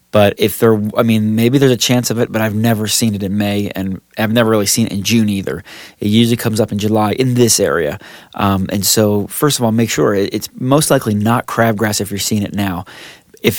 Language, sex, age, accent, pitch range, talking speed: English, male, 30-49, American, 105-125 Hz, 245 wpm